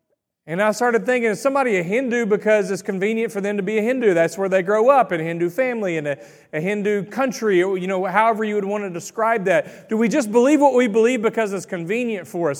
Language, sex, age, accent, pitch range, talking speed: English, male, 40-59, American, 170-215 Hz, 250 wpm